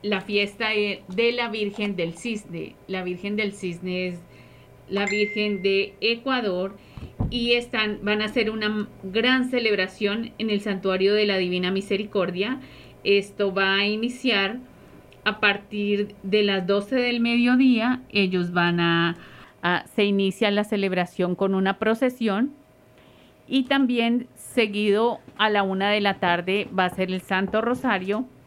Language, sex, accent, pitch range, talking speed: English, female, Colombian, 185-215 Hz, 140 wpm